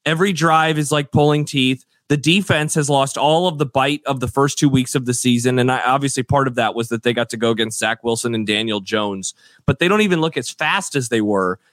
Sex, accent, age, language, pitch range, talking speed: male, American, 30-49, English, 120-155 Hz, 255 wpm